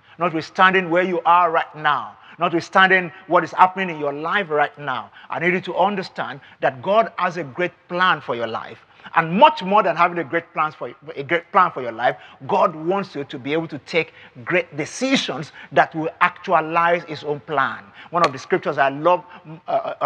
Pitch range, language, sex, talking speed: 155-200 Hz, English, male, 190 wpm